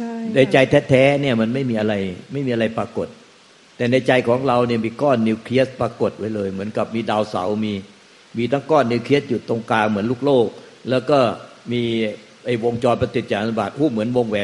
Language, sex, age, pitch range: Thai, male, 60-79, 110-130 Hz